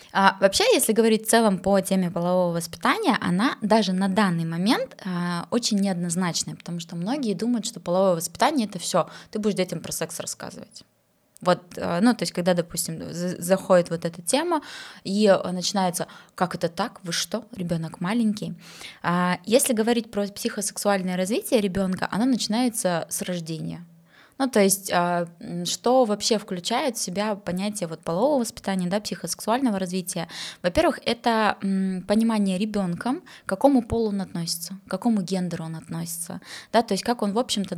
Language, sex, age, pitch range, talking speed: Russian, female, 20-39, 180-215 Hz, 160 wpm